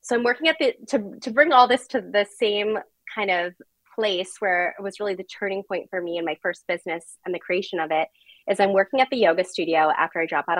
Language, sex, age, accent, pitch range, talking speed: English, female, 20-39, American, 185-245 Hz, 255 wpm